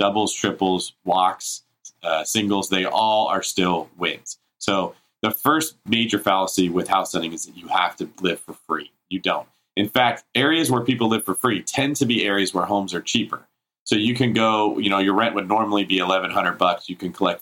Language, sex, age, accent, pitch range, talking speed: English, male, 40-59, American, 100-125 Hz, 205 wpm